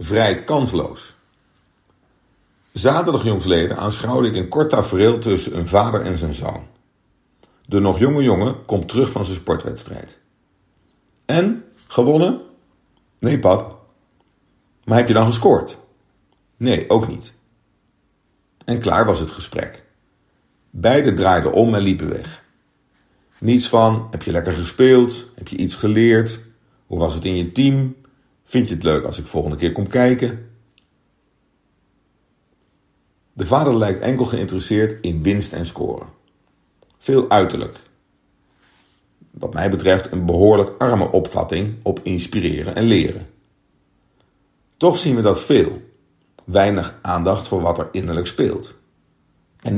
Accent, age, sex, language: Dutch, 50-69, male, Dutch